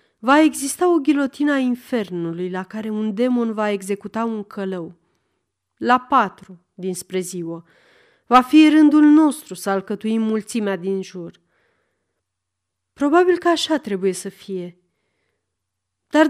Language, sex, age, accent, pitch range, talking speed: Romanian, female, 30-49, native, 180-280 Hz, 125 wpm